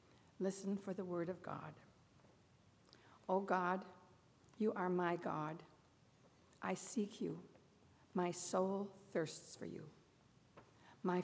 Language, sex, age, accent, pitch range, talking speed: English, female, 60-79, American, 175-205 Hz, 110 wpm